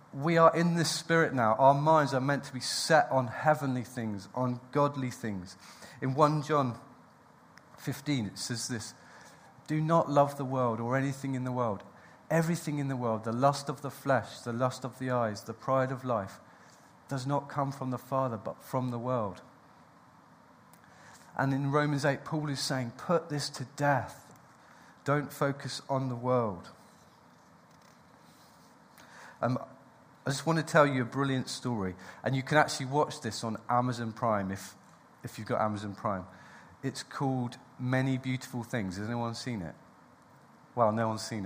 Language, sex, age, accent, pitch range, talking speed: English, male, 40-59, British, 115-140 Hz, 170 wpm